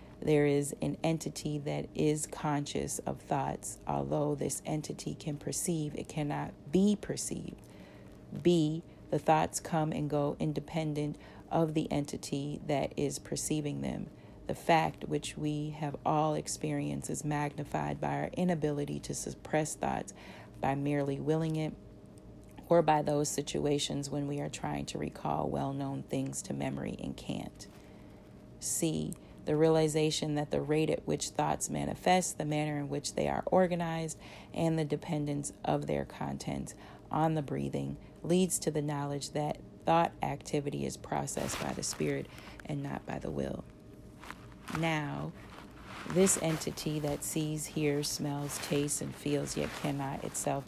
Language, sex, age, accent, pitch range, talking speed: English, female, 40-59, American, 105-155 Hz, 145 wpm